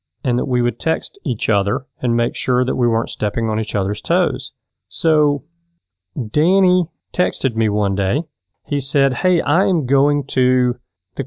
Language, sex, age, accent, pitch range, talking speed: English, male, 40-59, American, 110-140 Hz, 165 wpm